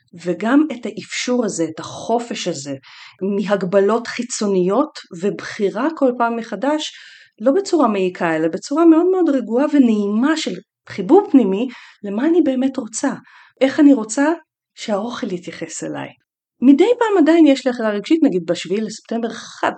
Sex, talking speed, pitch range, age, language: female, 140 wpm, 195-280 Hz, 30-49, Hebrew